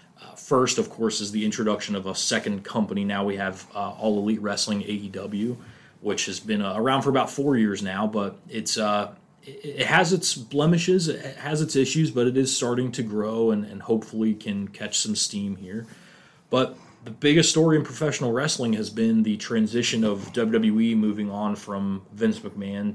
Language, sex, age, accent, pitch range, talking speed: English, male, 30-49, American, 105-135 Hz, 190 wpm